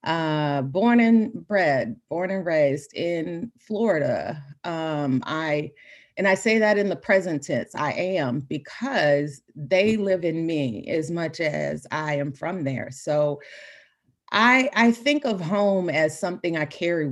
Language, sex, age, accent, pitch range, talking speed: English, female, 40-59, American, 150-210 Hz, 150 wpm